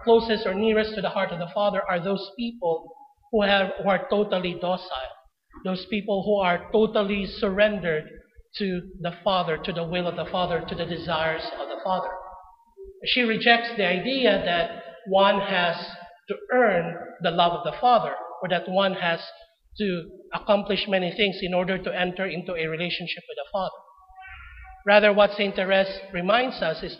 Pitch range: 175-205 Hz